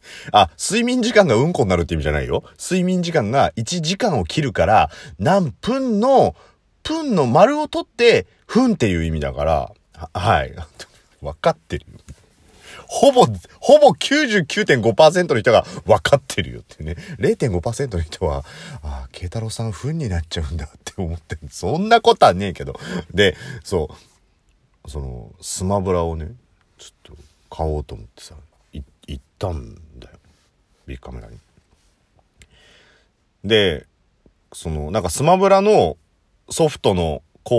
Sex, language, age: male, Japanese, 40-59